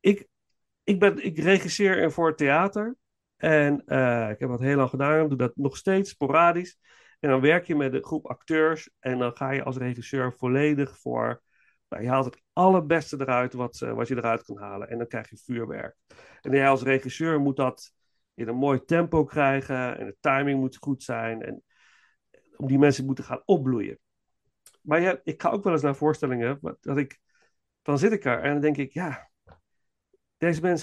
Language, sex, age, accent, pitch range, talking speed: Dutch, male, 50-69, Dutch, 130-170 Hz, 195 wpm